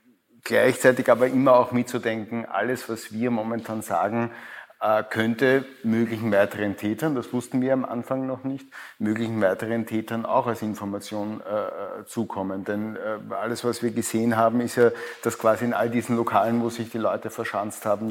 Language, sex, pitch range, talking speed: German, male, 110-120 Hz, 165 wpm